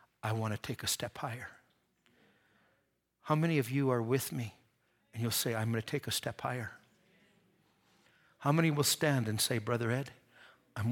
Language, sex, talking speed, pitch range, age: English, male, 180 wpm, 115-145 Hz, 60-79